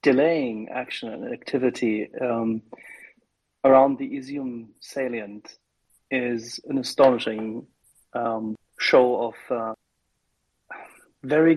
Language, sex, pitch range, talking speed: English, male, 120-145 Hz, 90 wpm